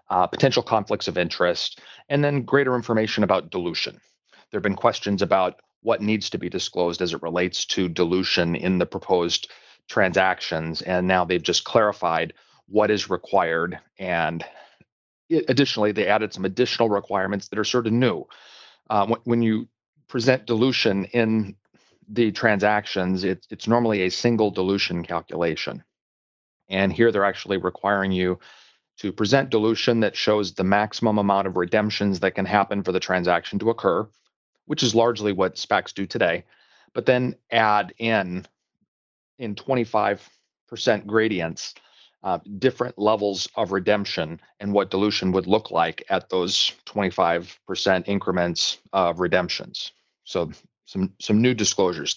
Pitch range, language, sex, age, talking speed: 95-115 Hz, English, male, 40-59, 145 wpm